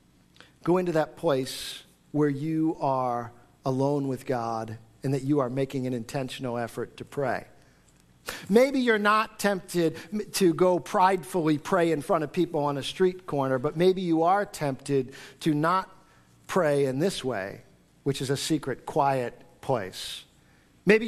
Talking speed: 155 wpm